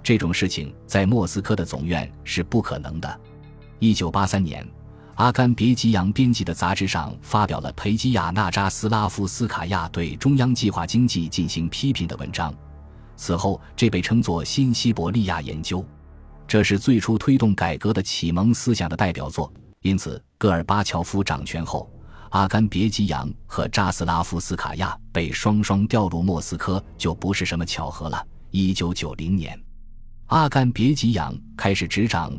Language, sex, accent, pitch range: Chinese, male, native, 85-110 Hz